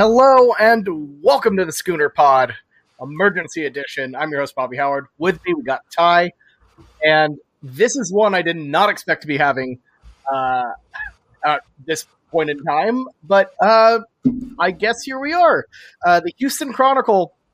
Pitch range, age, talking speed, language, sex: 140-190 Hz, 30-49, 160 wpm, English, male